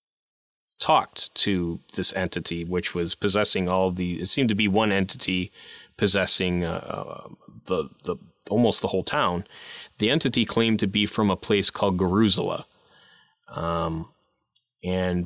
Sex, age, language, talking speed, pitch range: male, 20-39, English, 140 wpm, 90-110 Hz